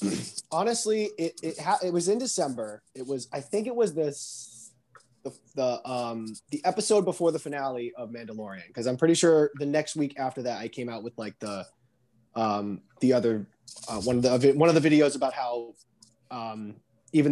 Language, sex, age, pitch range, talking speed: English, male, 20-39, 120-170 Hz, 190 wpm